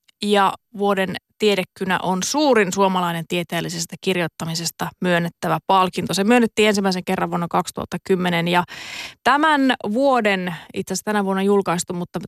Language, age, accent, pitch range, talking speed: Finnish, 20-39, native, 180-235 Hz, 120 wpm